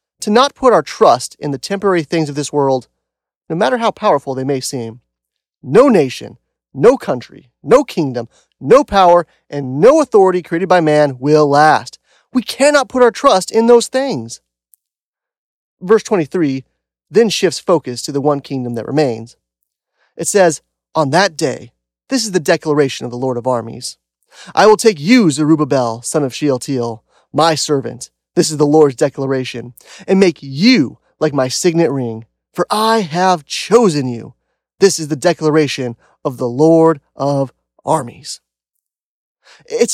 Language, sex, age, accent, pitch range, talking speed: English, male, 30-49, American, 130-195 Hz, 160 wpm